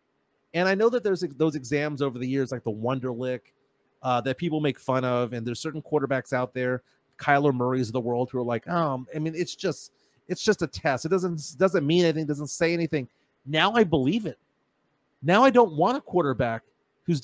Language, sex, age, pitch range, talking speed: English, male, 30-49, 130-175 Hz, 225 wpm